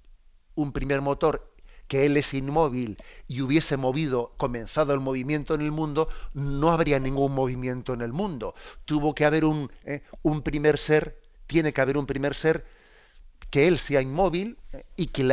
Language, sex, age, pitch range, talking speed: Spanish, male, 40-59, 130-150 Hz, 170 wpm